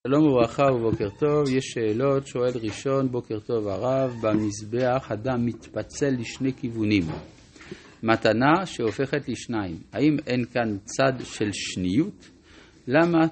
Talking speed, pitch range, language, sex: 115 wpm, 100-130 Hz, Hebrew, male